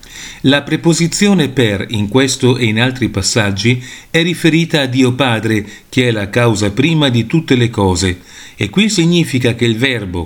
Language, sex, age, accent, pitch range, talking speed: Italian, male, 40-59, native, 110-145 Hz, 170 wpm